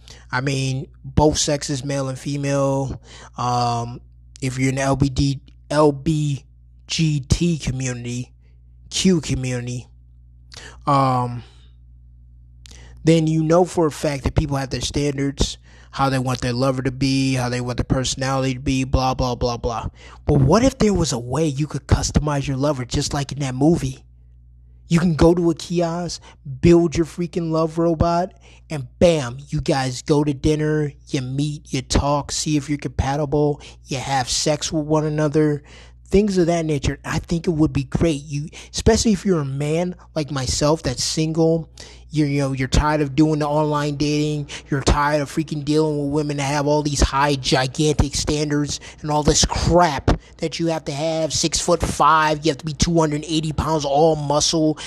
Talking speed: 175 wpm